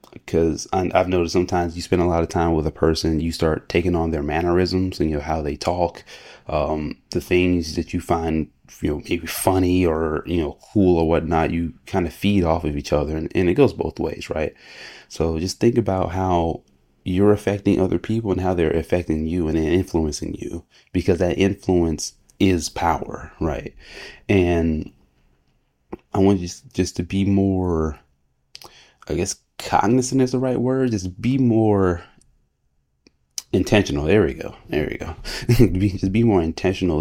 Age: 30-49